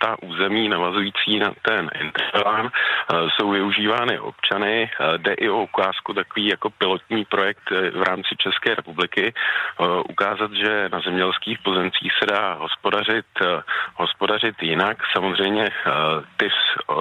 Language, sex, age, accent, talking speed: Czech, male, 40-59, native, 115 wpm